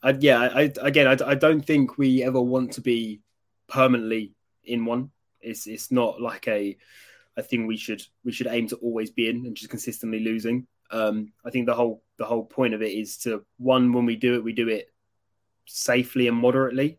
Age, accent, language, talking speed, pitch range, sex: 20-39, British, English, 210 wpm, 110-125 Hz, male